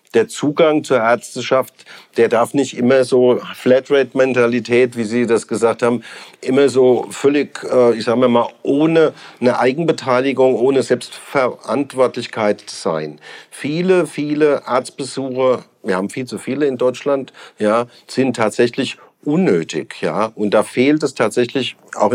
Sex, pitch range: male, 115-140 Hz